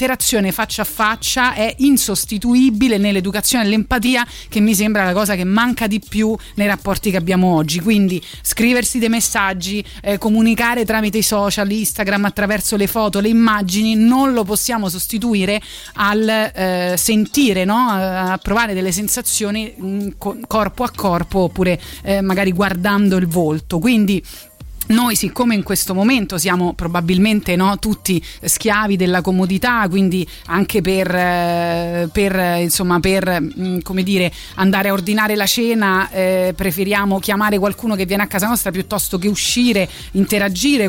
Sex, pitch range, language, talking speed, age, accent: female, 190-225 Hz, Italian, 140 wpm, 30-49, native